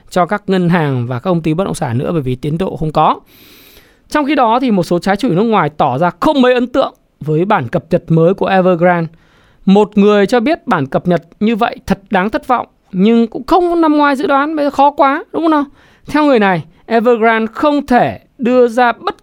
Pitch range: 165-235 Hz